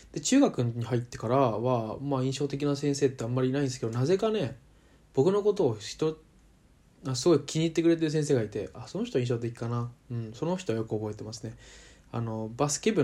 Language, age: Japanese, 20-39